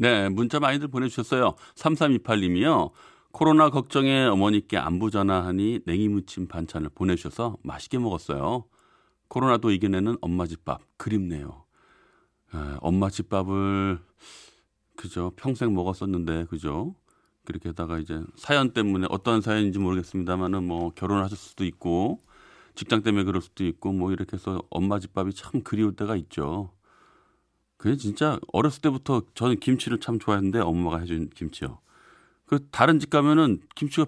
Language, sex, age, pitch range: Korean, male, 40-59, 90-130 Hz